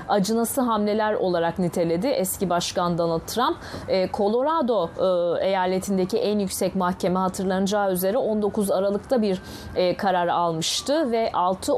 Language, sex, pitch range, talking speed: Turkish, female, 185-230 Hz, 110 wpm